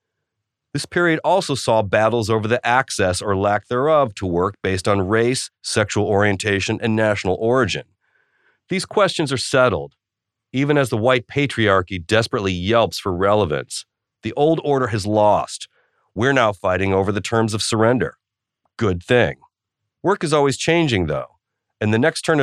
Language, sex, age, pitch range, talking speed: English, male, 40-59, 100-130 Hz, 155 wpm